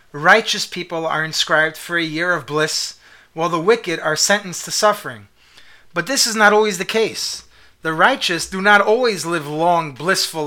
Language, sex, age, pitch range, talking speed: English, male, 30-49, 160-190 Hz, 180 wpm